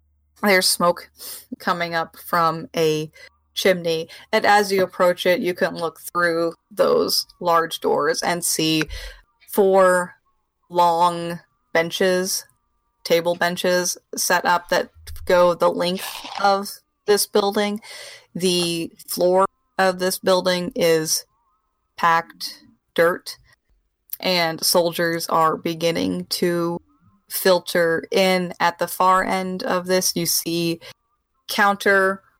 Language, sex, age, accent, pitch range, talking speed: English, female, 30-49, American, 165-185 Hz, 110 wpm